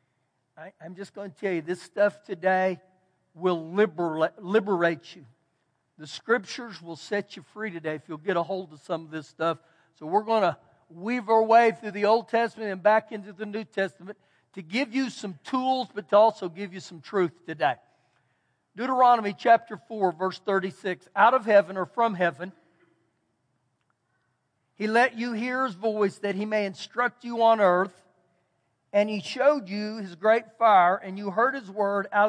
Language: English